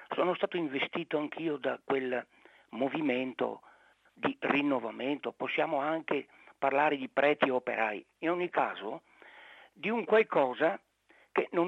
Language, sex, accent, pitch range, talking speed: Italian, male, native, 140-200 Hz, 125 wpm